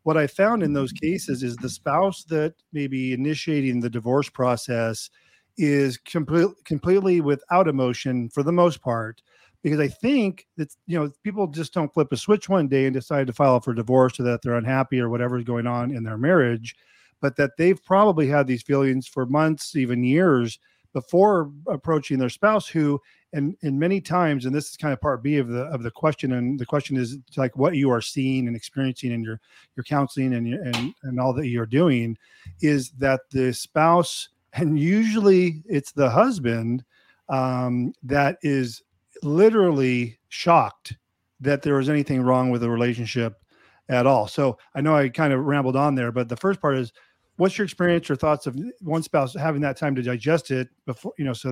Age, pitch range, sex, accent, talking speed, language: 40-59, 125-160 Hz, male, American, 195 wpm, English